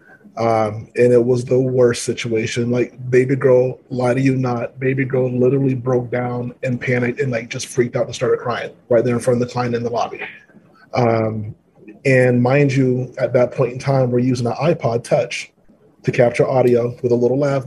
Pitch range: 120-130 Hz